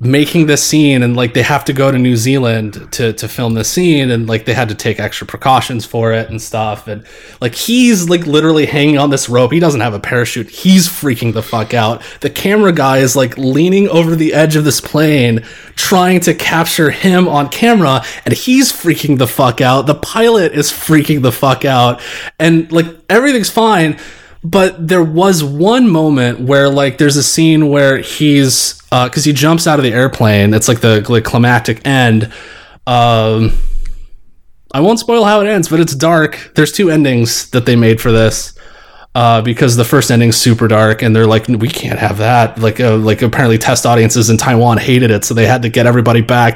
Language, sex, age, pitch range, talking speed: English, male, 20-39, 115-155 Hz, 205 wpm